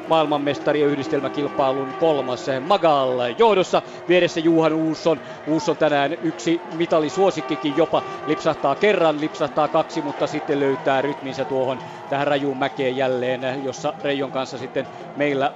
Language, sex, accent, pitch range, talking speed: Finnish, male, native, 135-155 Hz, 125 wpm